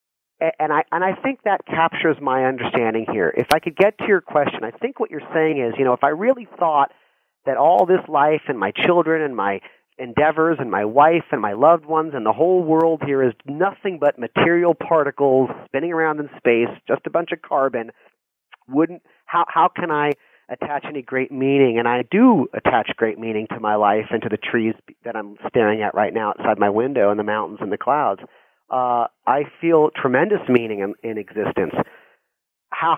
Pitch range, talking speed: 120-165 Hz, 200 wpm